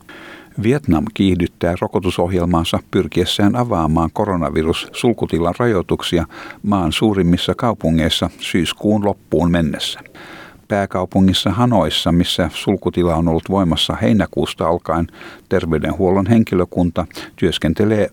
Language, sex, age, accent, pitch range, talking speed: Finnish, male, 60-79, native, 85-100 Hz, 85 wpm